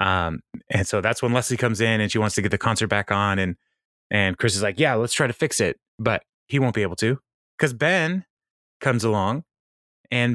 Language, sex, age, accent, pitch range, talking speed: English, male, 20-39, American, 105-135 Hz, 225 wpm